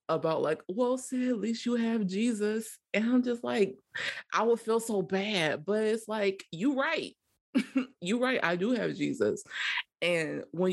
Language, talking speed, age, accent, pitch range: English, 180 wpm, 20-39, American, 135-215 Hz